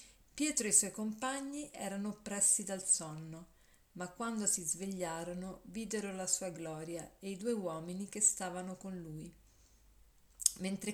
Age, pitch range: 50-69, 175-210 Hz